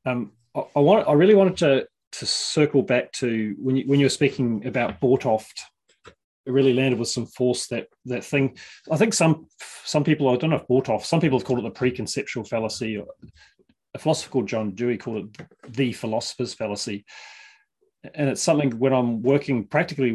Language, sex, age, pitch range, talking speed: English, male, 30-49, 115-145 Hz, 195 wpm